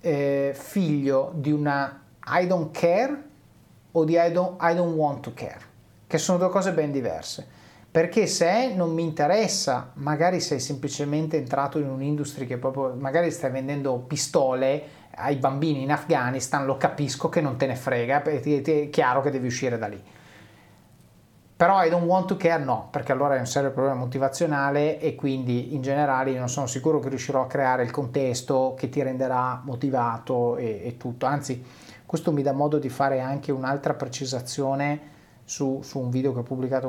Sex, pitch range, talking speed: male, 130-155 Hz, 175 wpm